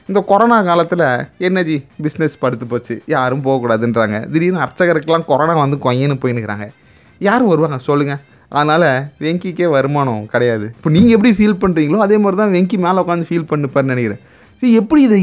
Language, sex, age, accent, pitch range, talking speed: Tamil, male, 30-49, native, 140-200 Hz, 155 wpm